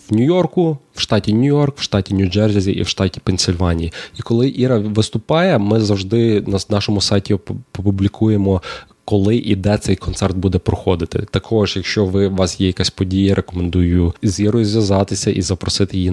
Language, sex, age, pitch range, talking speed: Ukrainian, male, 20-39, 95-110 Hz, 165 wpm